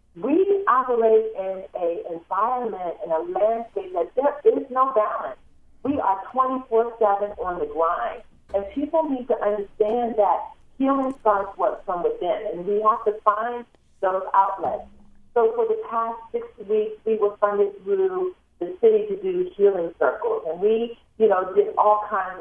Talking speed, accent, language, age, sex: 165 wpm, American, English, 40-59, female